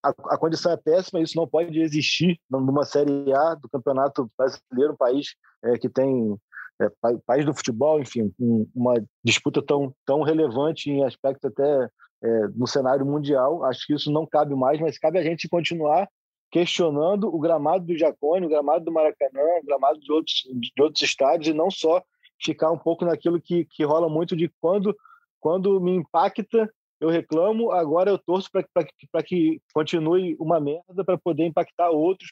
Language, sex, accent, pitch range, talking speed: Portuguese, male, Brazilian, 140-175 Hz, 175 wpm